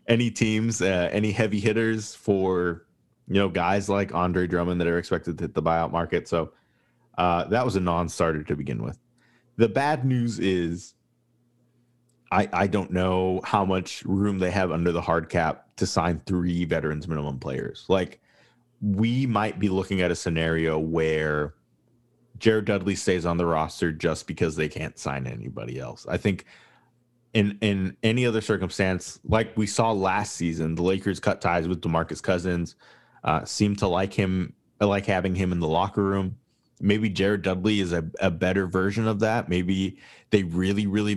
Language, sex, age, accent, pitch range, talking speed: English, male, 30-49, American, 90-110 Hz, 175 wpm